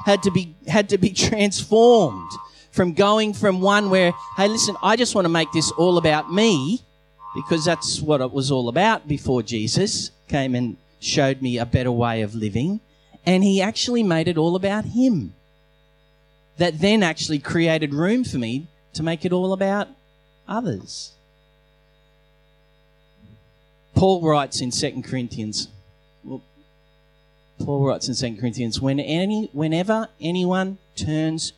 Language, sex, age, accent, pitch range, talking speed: English, male, 30-49, Australian, 130-185 Hz, 140 wpm